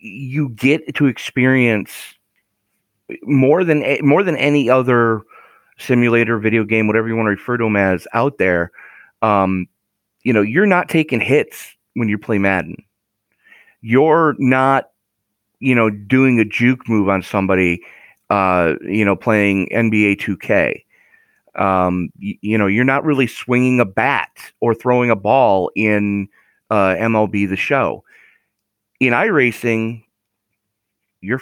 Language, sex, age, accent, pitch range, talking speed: English, male, 30-49, American, 105-145 Hz, 140 wpm